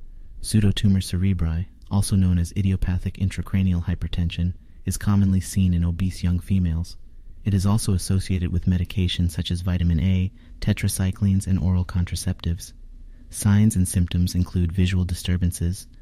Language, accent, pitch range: English, American, 85-95 Hz